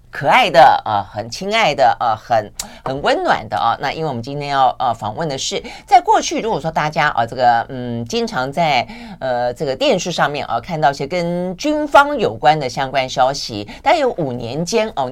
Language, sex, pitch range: Chinese, female, 140-205 Hz